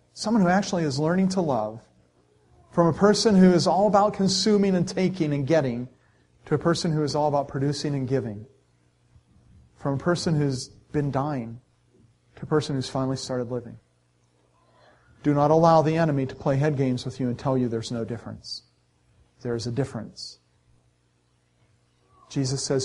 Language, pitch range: English, 105-160 Hz